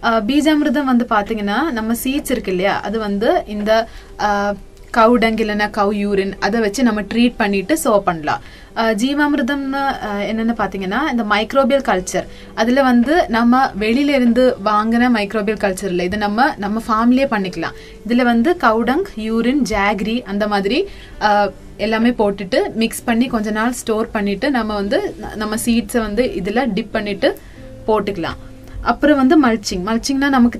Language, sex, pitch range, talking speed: Tamil, female, 205-245 Hz, 135 wpm